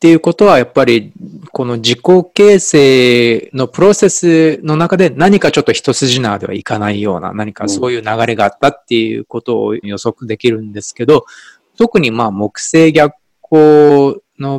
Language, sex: Japanese, male